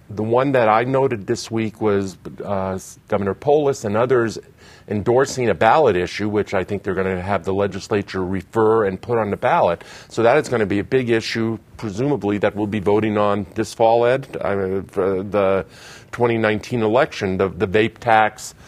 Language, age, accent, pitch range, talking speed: English, 50-69, American, 95-115 Hz, 195 wpm